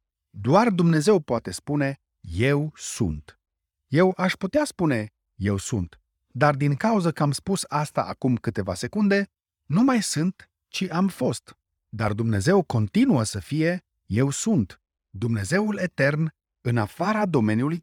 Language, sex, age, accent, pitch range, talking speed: Romanian, male, 30-49, native, 105-170 Hz, 135 wpm